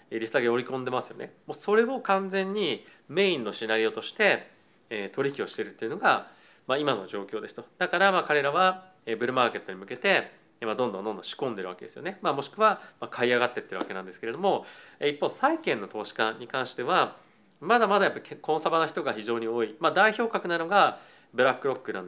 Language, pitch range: Japanese, 130-205 Hz